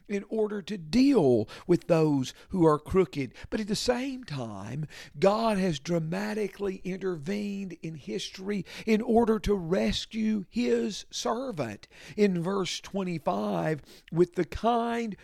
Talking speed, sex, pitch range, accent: 125 wpm, male, 145-215 Hz, American